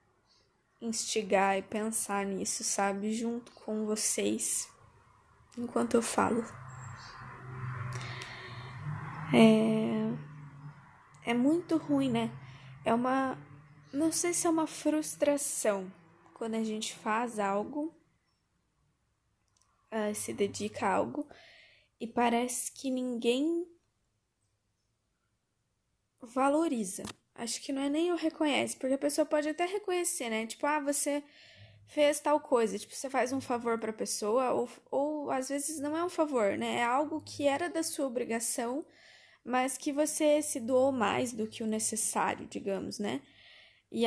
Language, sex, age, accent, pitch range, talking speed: Portuguese, female, 10-29, Brazilian, 195-290 Hz, 130 wpm